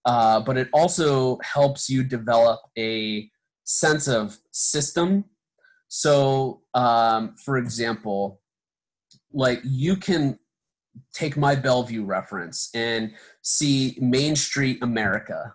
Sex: male